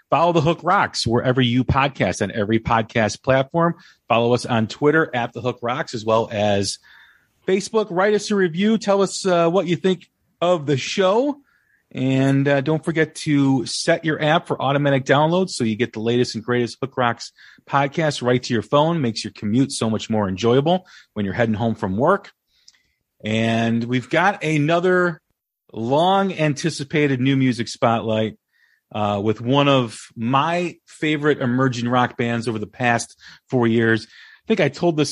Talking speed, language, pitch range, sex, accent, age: 175 wpm, English, 110-155 Hz, male, American, 40-59